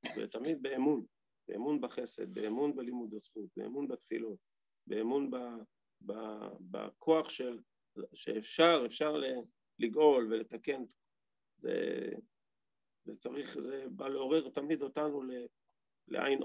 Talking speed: 100 wpm